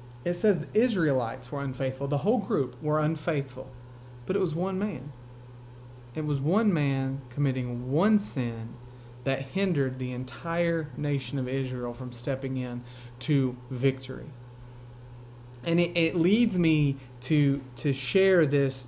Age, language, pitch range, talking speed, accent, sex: 30-49, English, 125-155 Hz, 140 wpm, American, male